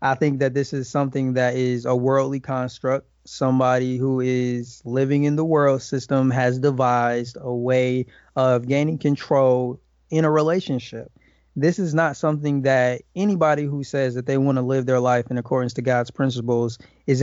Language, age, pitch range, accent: English, 20-39, 130-150 Hz, American